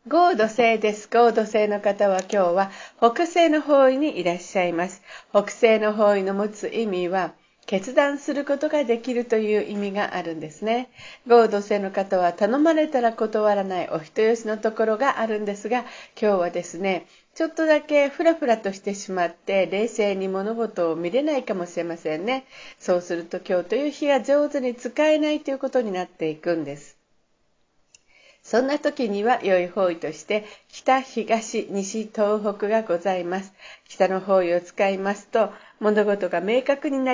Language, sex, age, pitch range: Japanese, female, 50-69, 190-255 Hz